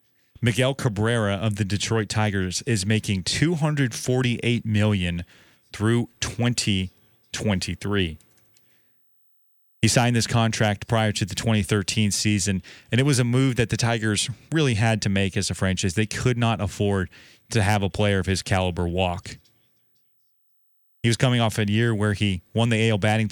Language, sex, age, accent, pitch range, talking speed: English, male, 30-49, American, 100-115 Hz, 155 wpm